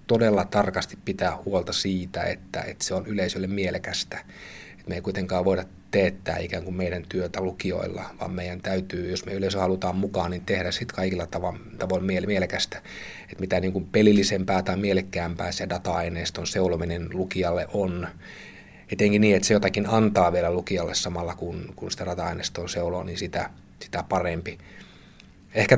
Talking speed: 155 wpm